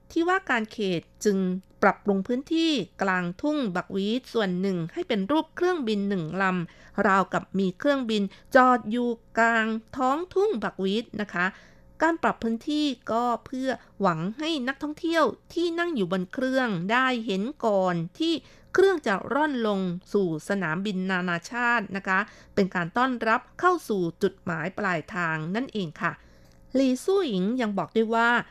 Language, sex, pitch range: Thai, female, 185-255 Hz